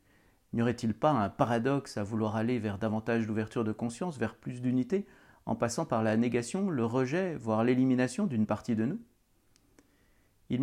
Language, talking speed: French, 170 wpm